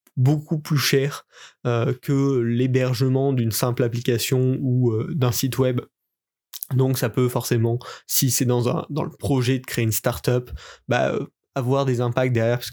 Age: 20-39